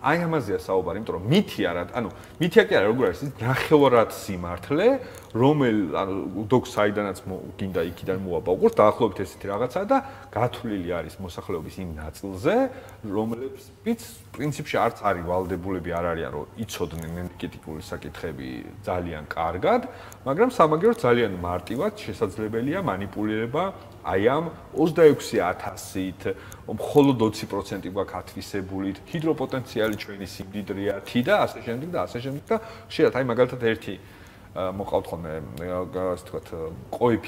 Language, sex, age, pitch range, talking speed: English, male, 30-49, 95-125 Hz, 70 wpm